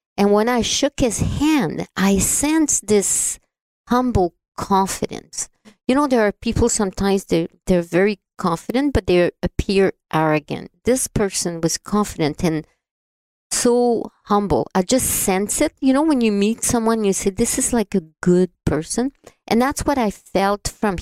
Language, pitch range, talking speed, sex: English, 170-235 Hz, 160 wpm, female